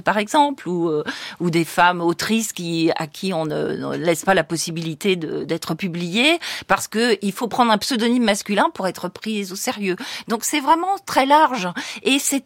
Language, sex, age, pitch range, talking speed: French, female, 40-59, 185-240 Hz, 195 wpm